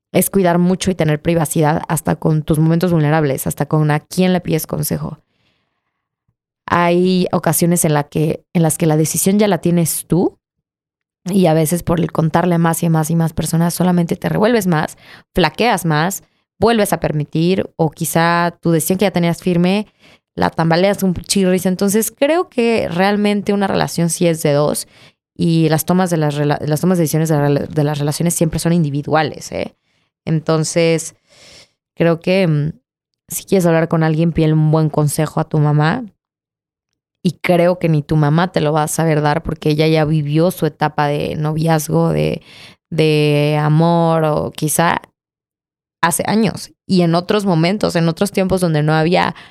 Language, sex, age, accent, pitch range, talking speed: Spanish, female, 20-39, Mexican, 155-180 Hz, 175 wpm